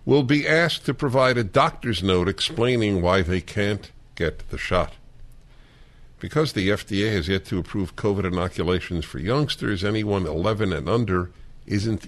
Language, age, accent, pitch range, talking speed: English, 50-69, American, 90-120 Hz, 155 wpm